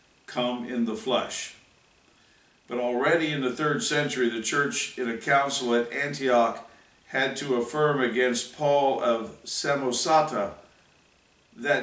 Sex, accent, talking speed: male, American, 125 wpm